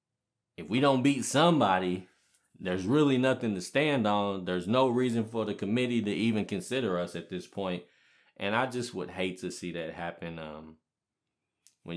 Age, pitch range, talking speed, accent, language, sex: 20-39, 95-120 Hz, 175 wpm, American, English, male